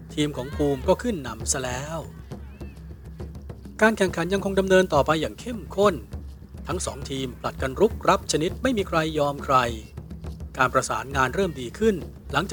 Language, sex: Thai, male